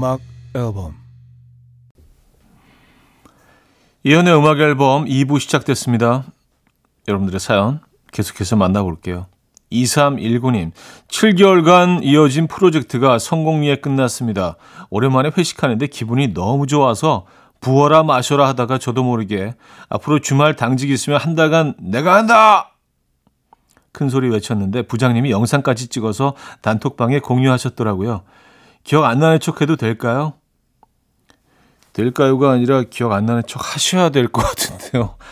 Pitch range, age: 115-150 Hz, 40-59